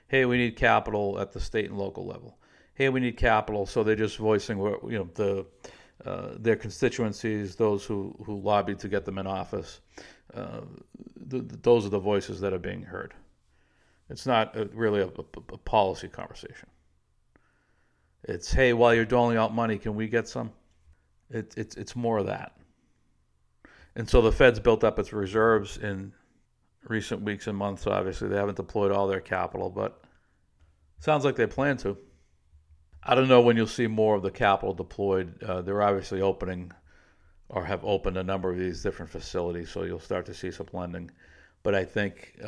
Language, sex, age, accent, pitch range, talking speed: English, male, 50-69, American, 90-110 Hz, 185 wpm